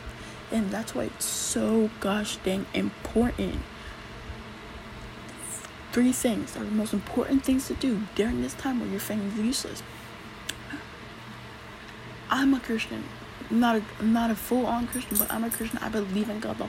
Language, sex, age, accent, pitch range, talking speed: English, female, 20-39, American, 205-245 Hz, 160 wpm